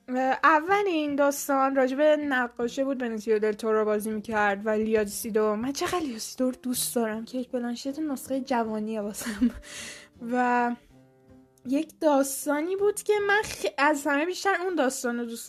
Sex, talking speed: female, 150 wpm